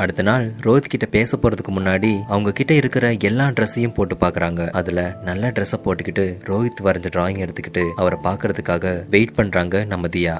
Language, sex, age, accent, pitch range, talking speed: Tamil, male, 20-39, native, 95-120 Hz, 155 wpm